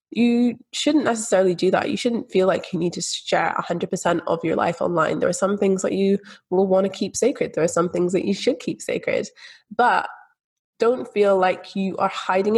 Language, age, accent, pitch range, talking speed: English, 20-39, British, 175-205 Hz, 215 wpm